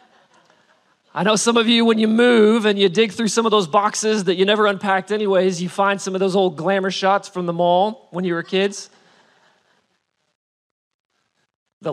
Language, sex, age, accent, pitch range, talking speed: English, male, 40-59, American, 175-220 Hz, 185 wpm